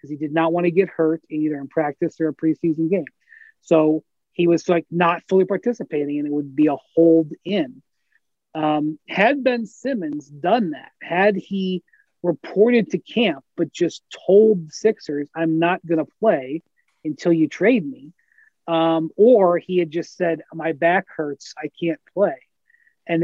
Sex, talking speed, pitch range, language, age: male, 165 wpm, 160-210 Hz, English, 30-49